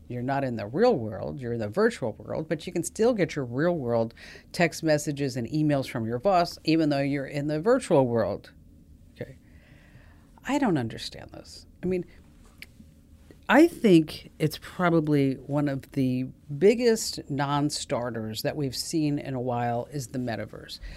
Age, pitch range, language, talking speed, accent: 50-69, 110-160 Hz, English, 165 wpm, American